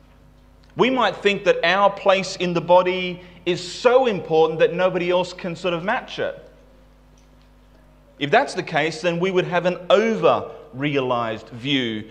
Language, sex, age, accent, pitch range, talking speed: English, male, 30-49, Australian, 135-185 Hz, 160 wpm